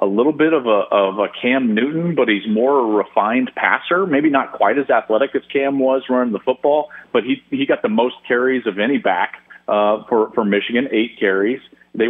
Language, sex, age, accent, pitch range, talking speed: English, male, 40-59, American, 115-145 Hz, 215 wpm